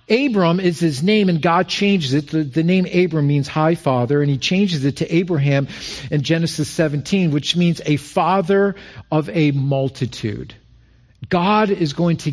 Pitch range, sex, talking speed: 130-180 Hz, male, 170 wpm